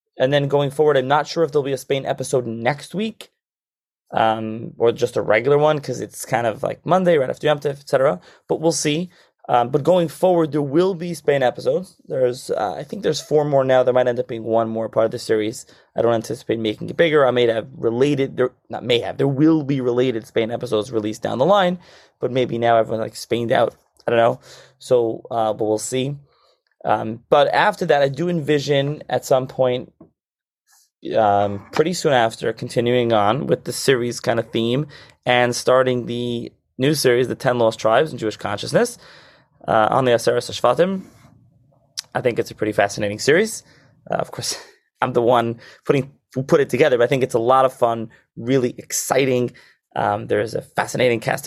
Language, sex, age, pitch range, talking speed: English, male, 20-39, 115-150 Hz, 205 wpm